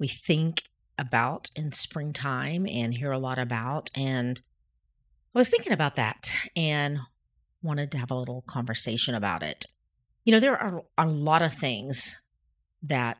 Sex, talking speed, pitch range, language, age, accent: female, 155 wpm, 130-170 Hz, English, 40-59, American